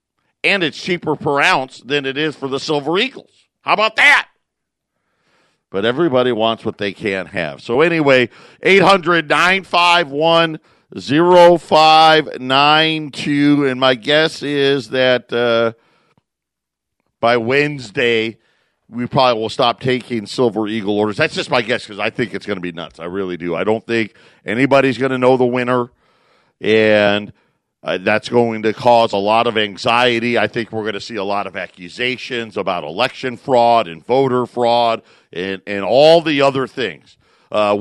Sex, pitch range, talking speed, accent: male, 115-150 Hz, 155 wpm, American